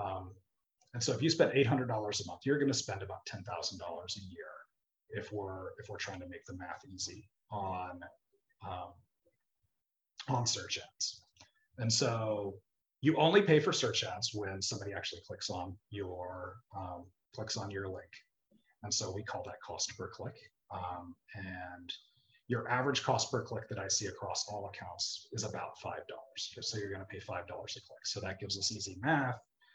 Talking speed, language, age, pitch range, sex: 170 wpm, English, 30-49, 95-125 Hz, male